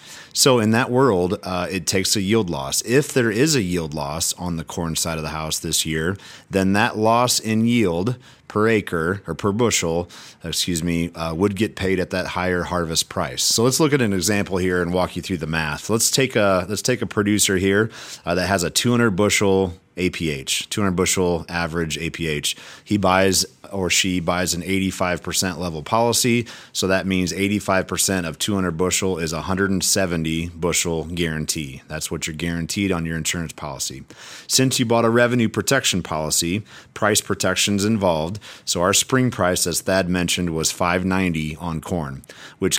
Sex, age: male, 30-49